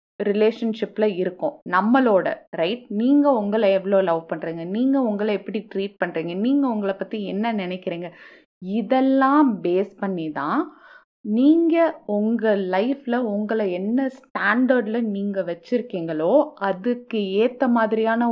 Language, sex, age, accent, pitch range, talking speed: Tamil, female, 20-39, native, 190-245 Hz, 100 wpm